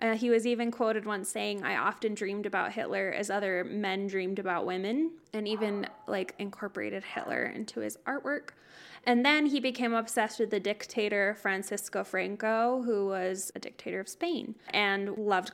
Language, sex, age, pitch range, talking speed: English, female, 10-29, 190-225 Hz, 170 wpm